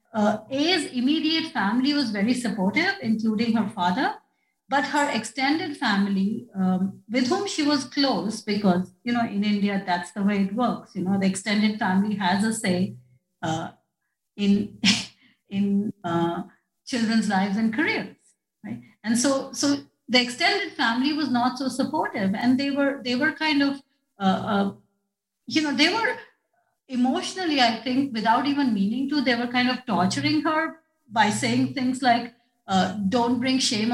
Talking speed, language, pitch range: 160 wpm, English, 200-260 Hz